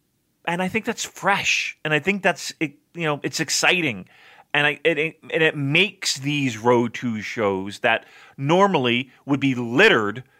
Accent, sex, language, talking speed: American, male, English, 175 wpm